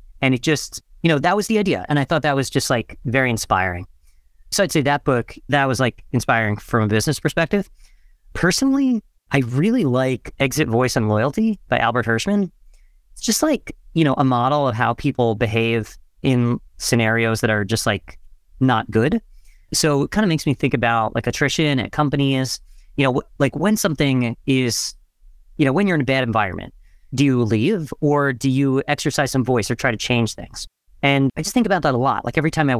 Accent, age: American, 30-49